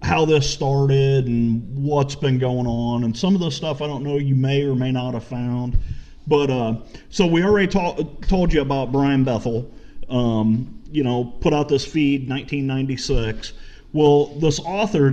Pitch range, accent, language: 125-160 Hz, American, English